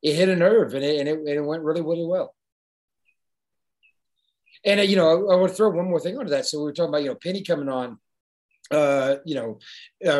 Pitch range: 135-165 Hz